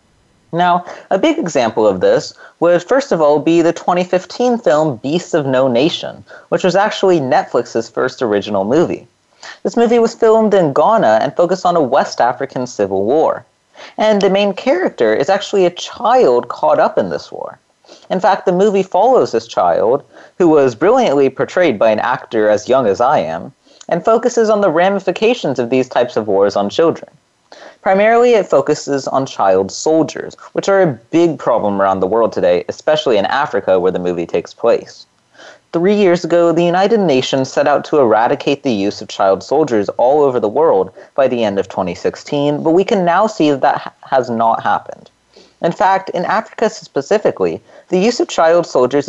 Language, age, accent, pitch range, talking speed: English, 30-49, American, 125-195 Hz, 185 wpm